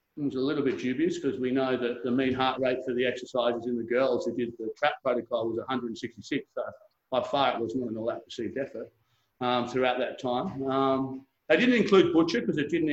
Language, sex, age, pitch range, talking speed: English, male, 40-59, 125-150 Hz, 225 wpm